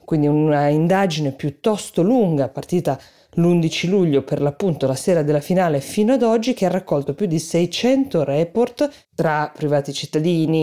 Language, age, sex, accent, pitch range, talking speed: Italian, 20-39, female, native, 150-190 Hz, 150 wpm